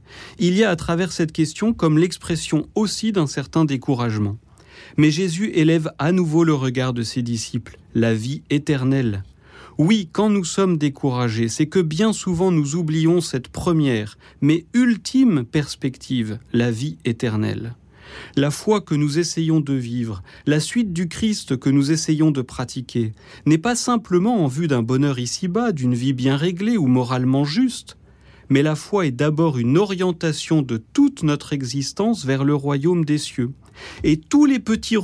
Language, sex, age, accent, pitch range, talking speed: French, male, 40-59, French, 130-180 Hz, 165 wpm